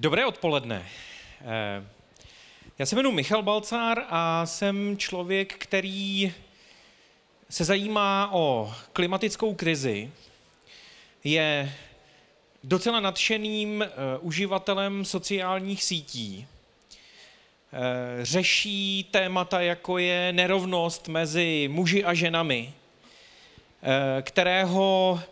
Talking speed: 75 wpm